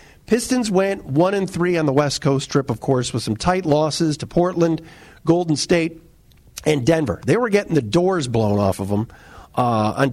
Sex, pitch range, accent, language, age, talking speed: male, 135-180 Hz, American, English, 50-69, 195 wpm